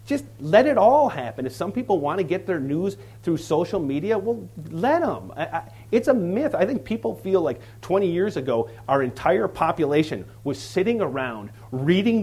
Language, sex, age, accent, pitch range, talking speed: English, male, 30-49, American, 120-170 Hz, 180 wpm